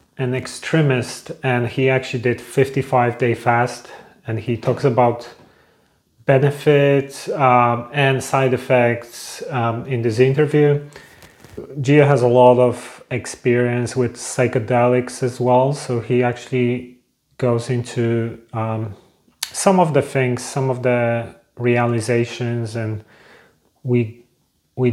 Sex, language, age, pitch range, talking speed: male, English, 30-49, 120-135 Hz, 115 wpm